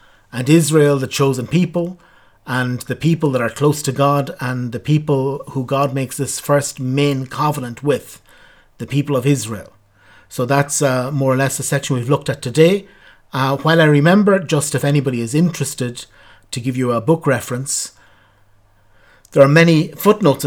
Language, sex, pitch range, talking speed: English, male, 125-145 Hz, 175 wpm